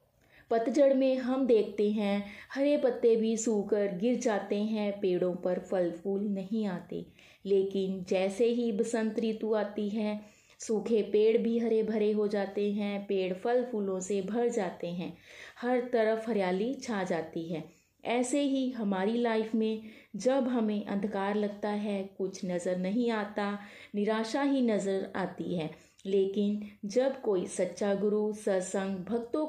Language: Hindi